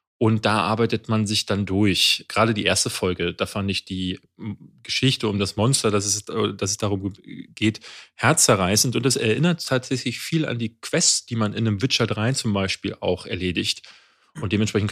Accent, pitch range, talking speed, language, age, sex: German, 100-120 Hz, 185 wpm, German, 30-49, male